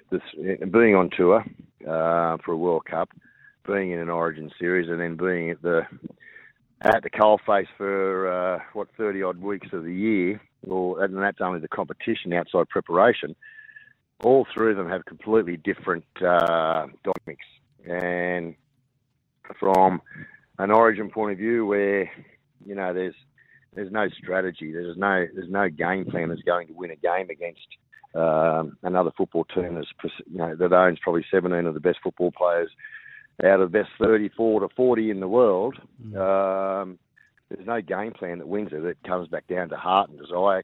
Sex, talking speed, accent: male, 170 wpm, Australian